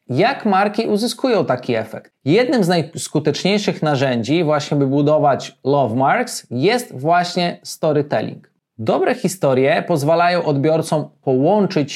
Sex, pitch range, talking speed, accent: male, 145-180 Hz, 110 wpm, native